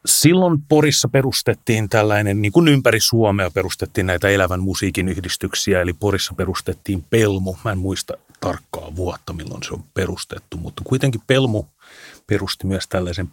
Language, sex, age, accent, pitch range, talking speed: Finnish, male, 30-49, native, 90-110 Hz, 145 wpm